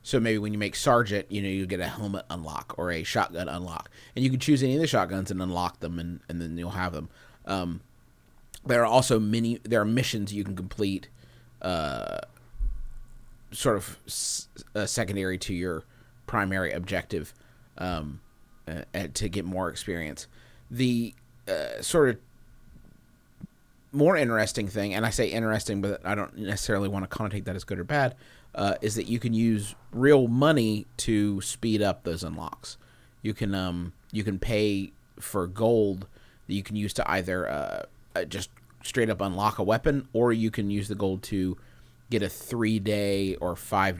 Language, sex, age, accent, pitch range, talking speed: English, male, 30-49, American, 95-115 Hz, 180 wpm